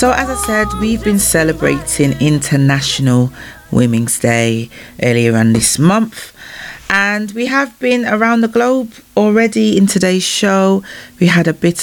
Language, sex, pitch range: English, female, 135-185 Hz